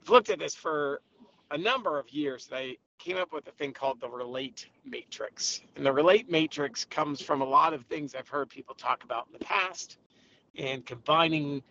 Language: English